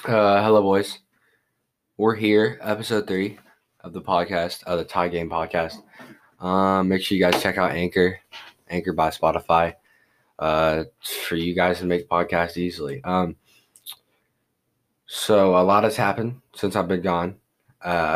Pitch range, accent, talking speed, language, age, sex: 85-105 Hz, American, 150 wpm, English, 20-39, male